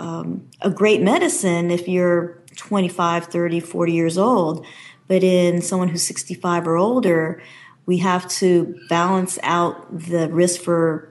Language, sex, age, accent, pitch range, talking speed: English, female, 30-49, American, 170-190 Hz, 140 wpm